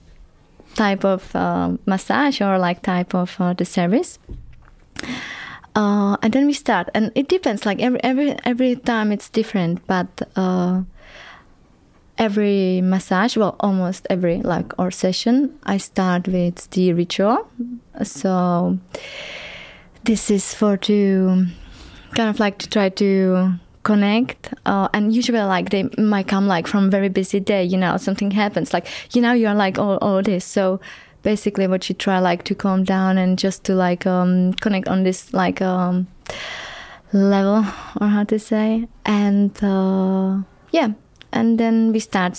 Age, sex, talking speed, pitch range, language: 20-39, female, 155 wpm, 185-215 Hz, Swedish